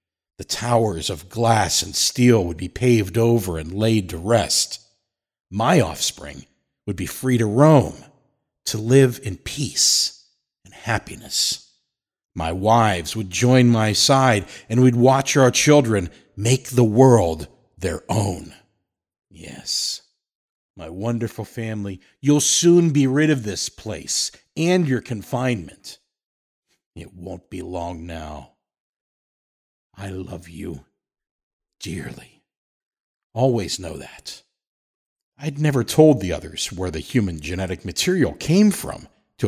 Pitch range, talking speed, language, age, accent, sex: 90-125 Hz, 125 wpm, English, 50-69, American, male